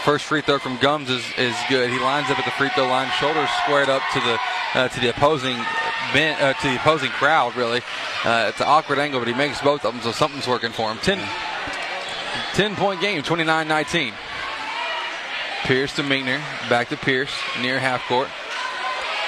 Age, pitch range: 20-39, 130-160 Hz